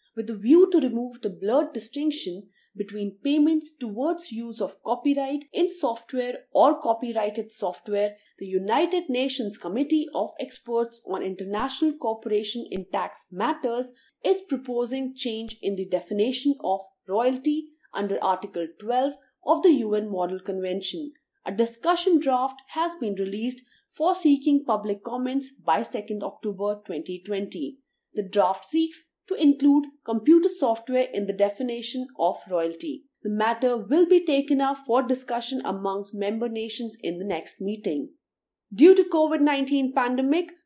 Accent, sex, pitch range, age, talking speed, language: Indian, female, 210-290 Hz, 30-49, 135 wpm, English